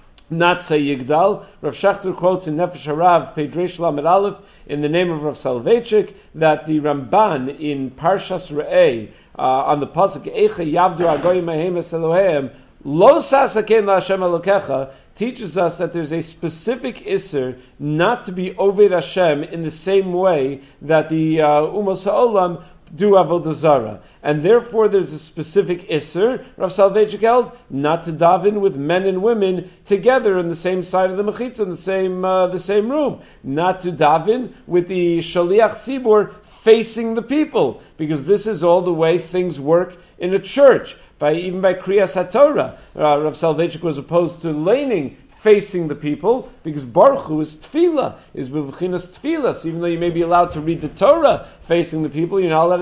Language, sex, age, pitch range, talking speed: English, male, 50-69, 160-200 Hz, 160 wpm